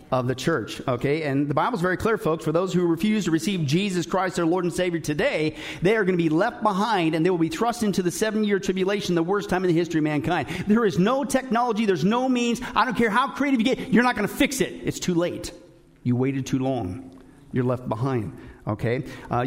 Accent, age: American, 50-69